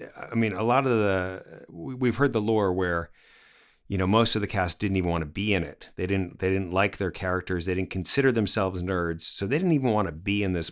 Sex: male